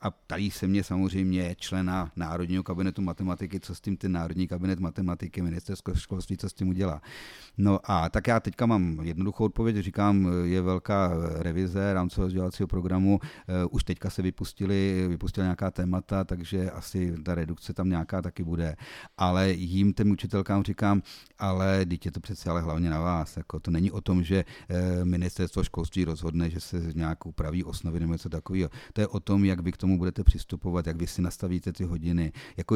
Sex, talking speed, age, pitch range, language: male, 180 wpm, 40-59, 90-95 Hz, Czech